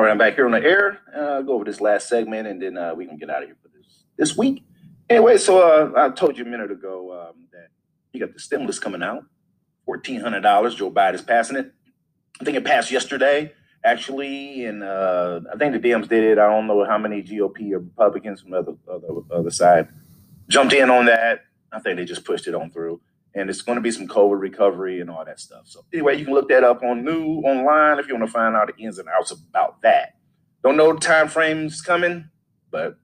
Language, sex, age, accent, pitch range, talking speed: English, male, 30-49, American, 100-150 Hz, 240 wpm